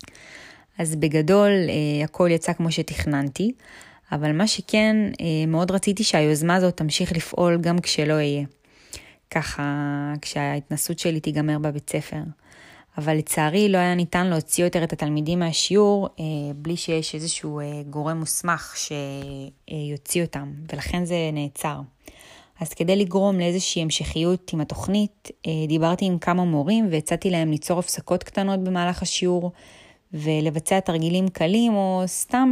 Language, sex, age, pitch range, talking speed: Hebrew, female, 20-39, 155-180 Hz, 125 wpm